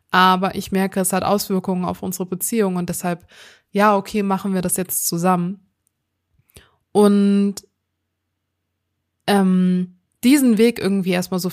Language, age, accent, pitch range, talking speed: German, 20-39, German, 180-205 Hz, 130 wpm